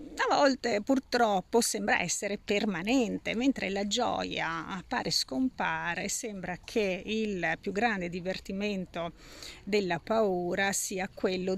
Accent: native